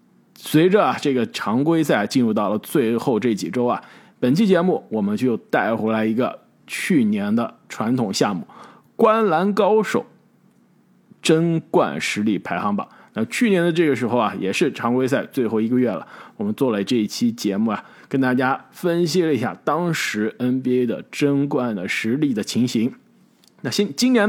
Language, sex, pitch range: Chinese, male, 125-210 Hz